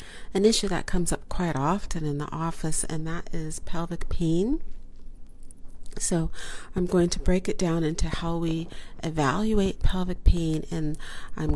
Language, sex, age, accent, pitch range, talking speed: English, female, 40-59, American, 145-175 Hz, 155 wpm